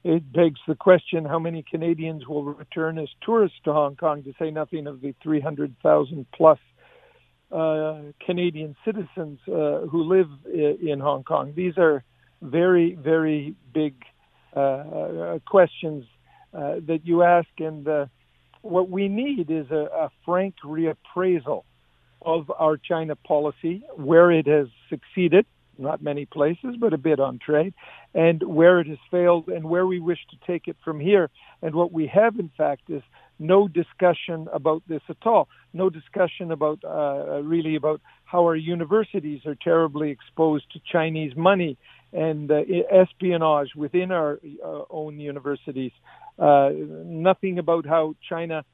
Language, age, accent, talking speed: English, 50-69, American, 150 wpm